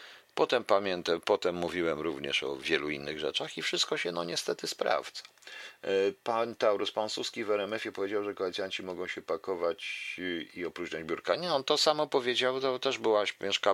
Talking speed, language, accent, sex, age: 170 wpm, Polish, native, male, 50-69